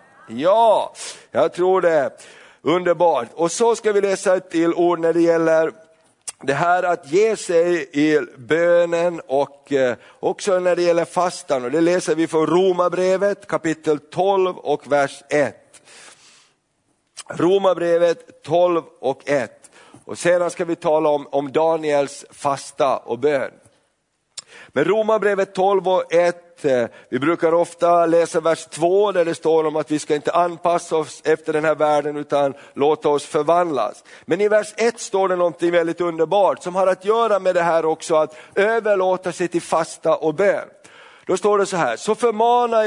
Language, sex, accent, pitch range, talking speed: Swedish, male, native, 160-190 Hz, 160 wpm